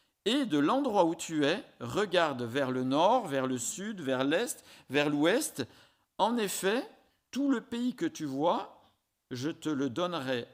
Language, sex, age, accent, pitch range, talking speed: French, male, 50-69, French, 125-190 Hz, 165 wpm